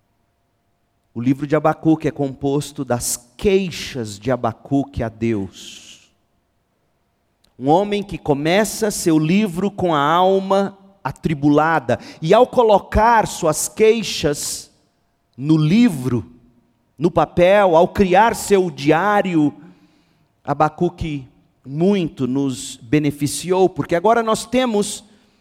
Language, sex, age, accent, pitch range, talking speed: Portuguese, male, 40-59, Brazilian, 135-210 Hz, 100 wpm